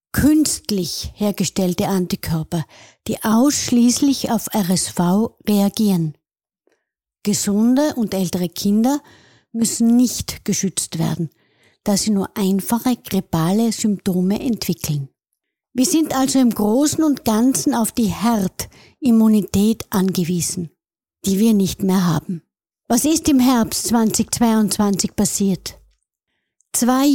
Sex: female